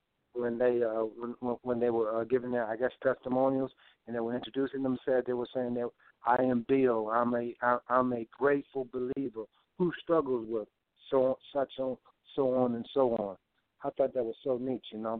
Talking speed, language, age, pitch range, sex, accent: 195 wpm, English, 60-79, 115-140 Hz, male, American